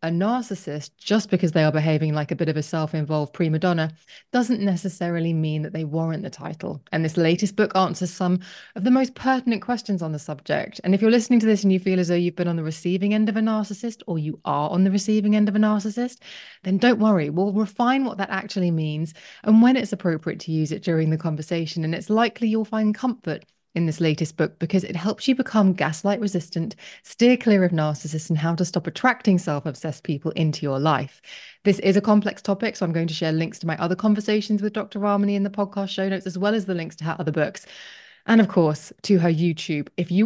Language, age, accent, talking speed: English, 20-39, British, 235 wpm